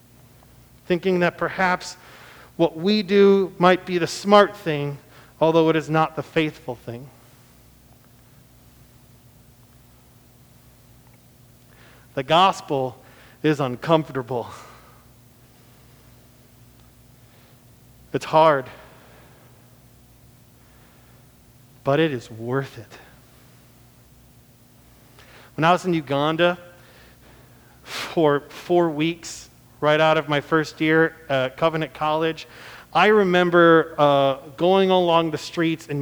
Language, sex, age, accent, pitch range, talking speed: English, male, 40-59, American, 125-170 Hz, 90 wpm